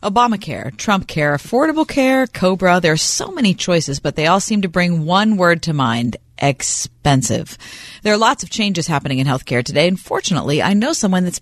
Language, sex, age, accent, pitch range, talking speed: English, female, 40-59, American, 150-220 Hz, 200 wpm